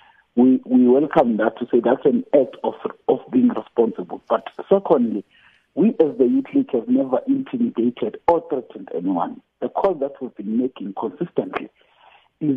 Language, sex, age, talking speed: English, male, 50-69, 160 wpm